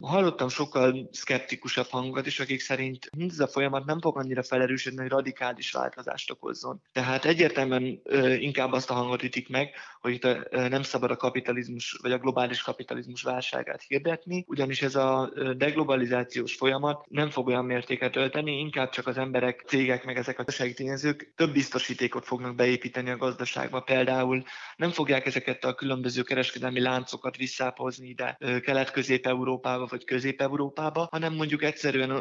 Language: Hungarian